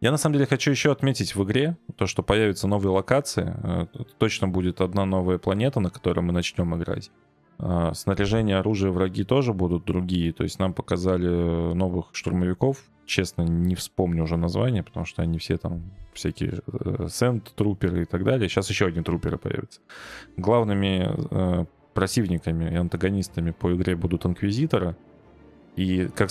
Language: Russian